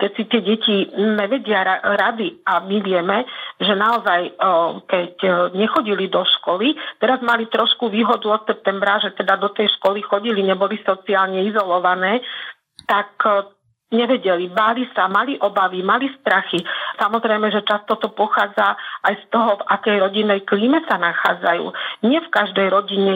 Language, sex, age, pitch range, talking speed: Slovak, female, 50-69, 200-225 Hz, 145 wpm